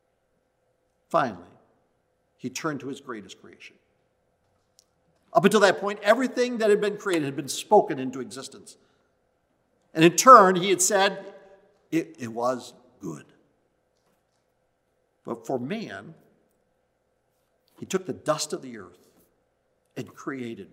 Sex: male